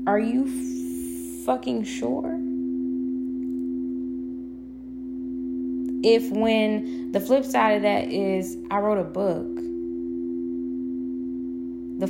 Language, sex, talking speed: English, female, 85 wpm